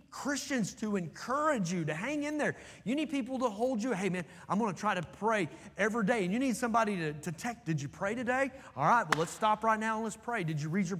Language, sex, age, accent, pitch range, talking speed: English, male, 30-49, American, 155-235 Hz, 265 wpm